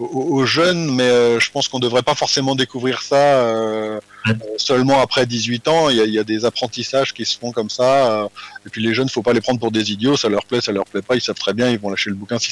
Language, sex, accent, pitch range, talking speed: French, male, French, 105-140 Hz, 285 wpm